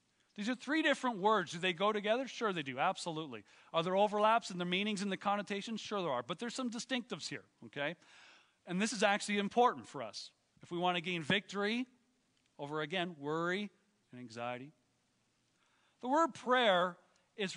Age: 40-59